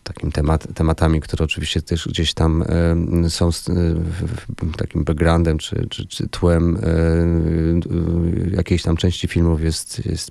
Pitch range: 80-90 Hz